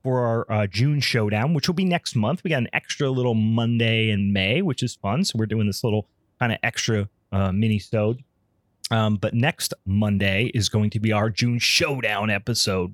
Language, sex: English, male